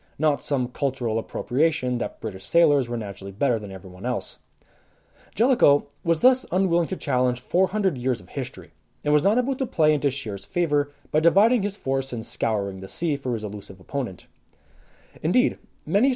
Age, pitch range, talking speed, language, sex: 20-39, 115-165 Hz, 170 wpm, English, male